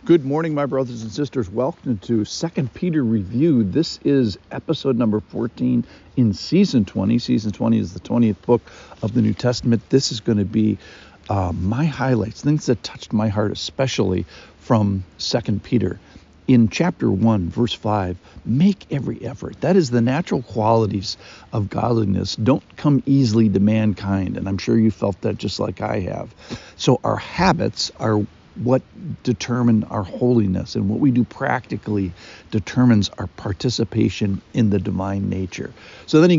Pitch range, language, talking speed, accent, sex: 105-125 Hz, English, 165 wpm, American, male